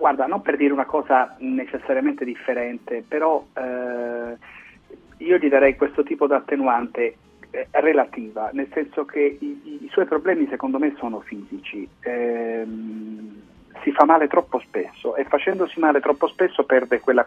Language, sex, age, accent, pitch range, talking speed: Italian, male, 40-59, native, 120-165 Hz, 155 wpm